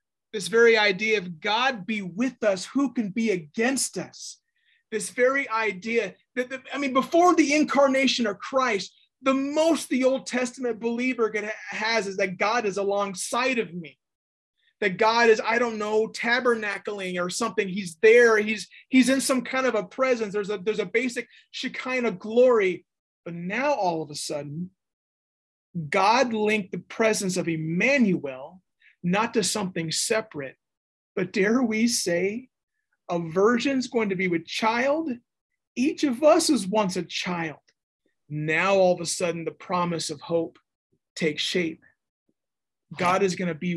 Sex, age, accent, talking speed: male, 30-49, American, 160 wpm